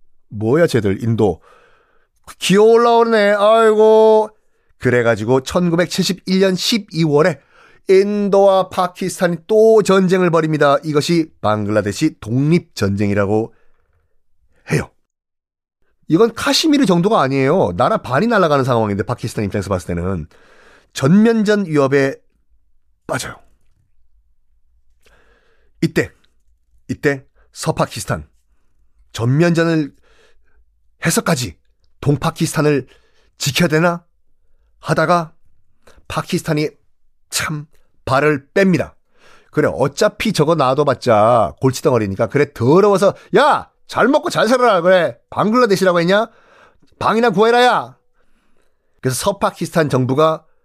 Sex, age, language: male, 30-49, Korean